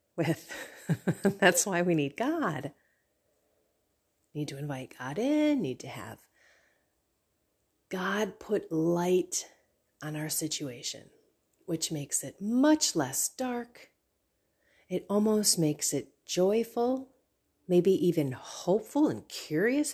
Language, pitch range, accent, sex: English, 120-205 Hz, American, female